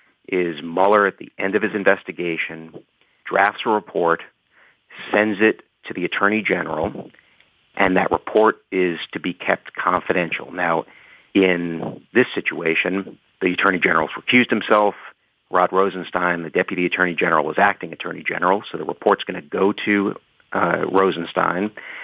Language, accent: English, American